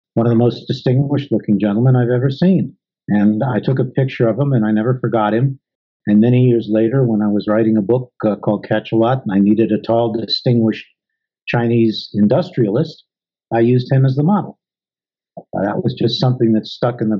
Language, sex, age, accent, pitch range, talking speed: English, male, 50-69, American, 105-130 Hz, 200 wpm